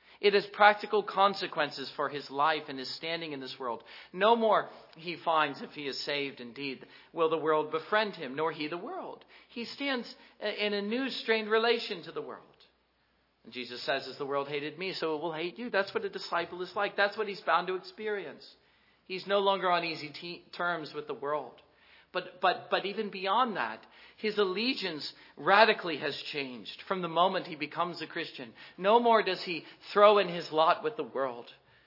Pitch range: 145-195 Hz